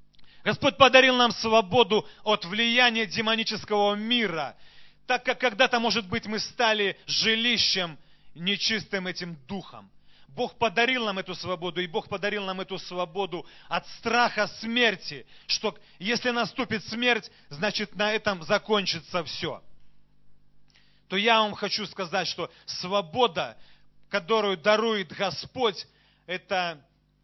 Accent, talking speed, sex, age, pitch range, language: native, 115 wpm, male, 30-49, 180-225 Hz, Russian